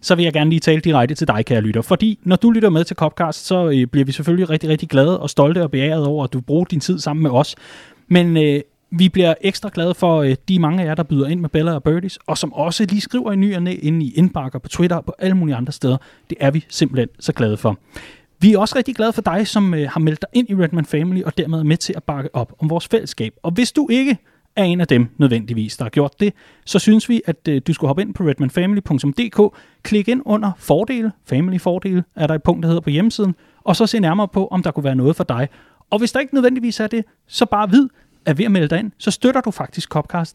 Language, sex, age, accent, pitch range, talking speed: Danish, male, 30-49, native, 145-185 Hz, 265 wpm